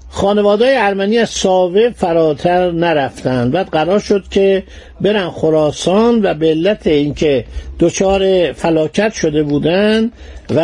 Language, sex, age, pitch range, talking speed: Persian, male, 50-69, 155-210 Hz, 115 wpm